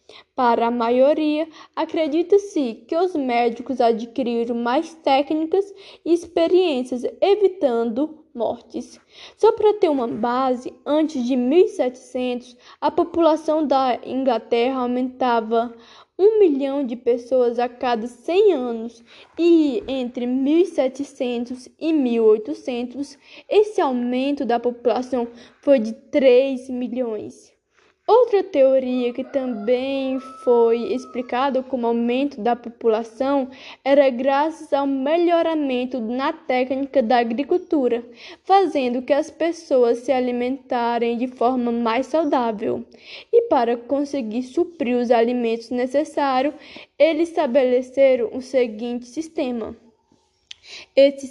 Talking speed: 105 wpm